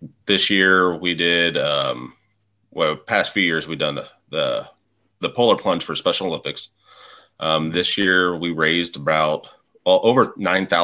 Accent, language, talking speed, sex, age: American, English, 150 wpm, male, 30-49